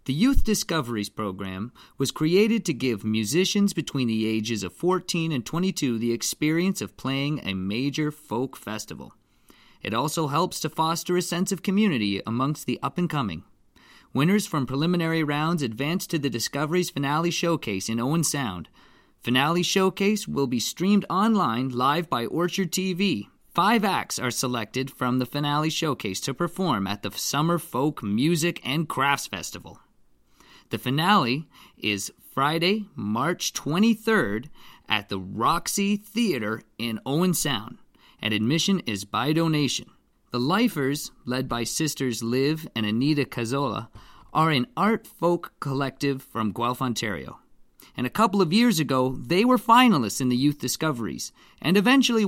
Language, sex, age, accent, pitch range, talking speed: English, male, 30-49, American, 120-180 Hz, 145 wpm